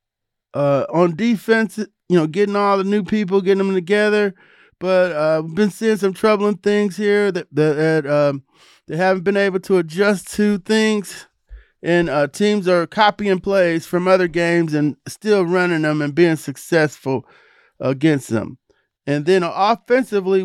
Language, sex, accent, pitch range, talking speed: English, male, American, 155-190 Hz, 160 wpm